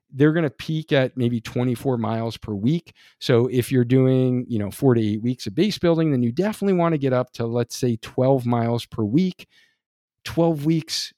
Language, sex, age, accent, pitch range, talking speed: English, male, 50-69, American, 120-155 Hz, 210 wpm